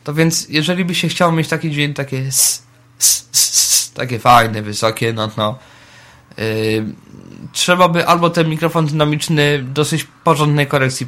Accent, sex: native, male